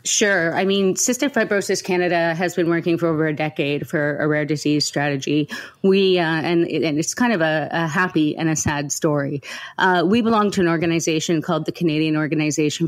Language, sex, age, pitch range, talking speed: English, female, 30-49, 155-175 Hz, 195 wpm